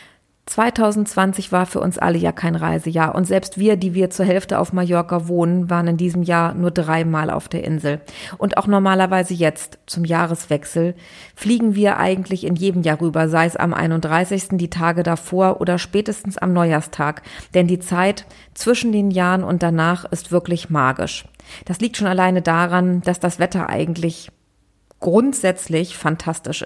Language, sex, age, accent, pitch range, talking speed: German, female, 30-49, German, 165-185 Hz, 165 wpm